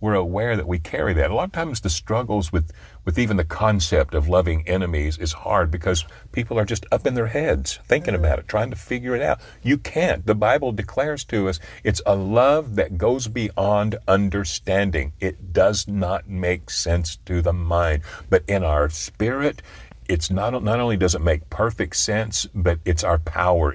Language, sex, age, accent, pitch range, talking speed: English, male, 60-79, American, 85-105 Hz, 195 wpm